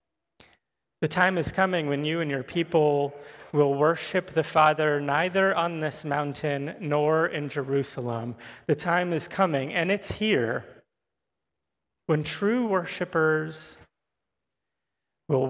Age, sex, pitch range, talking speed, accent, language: 30-49, male, 130-170 Hz, 120 wpm, American, English